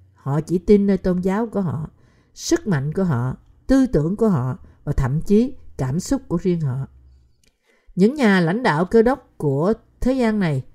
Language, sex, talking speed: Vietnamese, female, 190 wpm